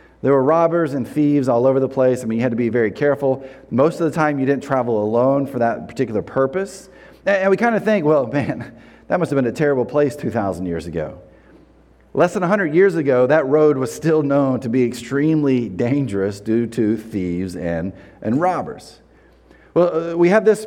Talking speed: 205 wpm